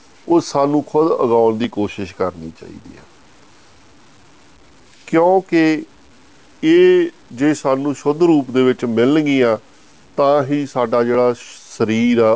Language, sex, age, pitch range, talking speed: Punjabi, male, 50-69, 115-150 Hz, 110 wpm